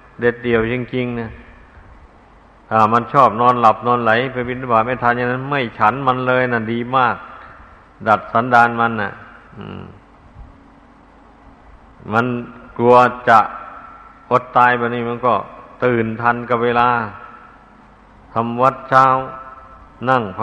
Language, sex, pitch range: Thai, male, 115-125 Hz